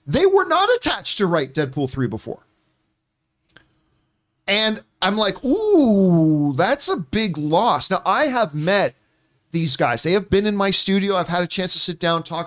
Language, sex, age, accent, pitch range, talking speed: English, male, 40-59, American, 140-195 Hz, 185 wpm